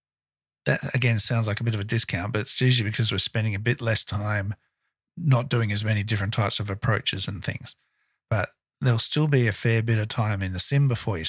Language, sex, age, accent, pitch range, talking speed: English, male, 50-69, Australian, 100-125 Hz, 230 wpm